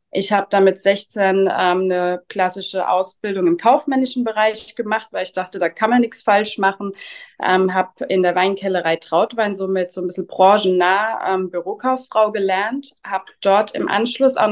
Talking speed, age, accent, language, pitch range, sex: 165 wpm, 20-39, German, German, 190-235 Hz, female